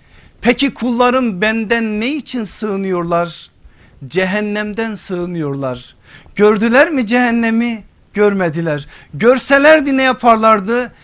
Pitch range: 155-220 Hz